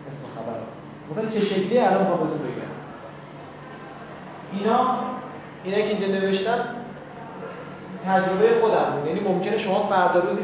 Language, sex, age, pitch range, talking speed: Persian, male, 30-49, 165-220 Hz, 105 wpm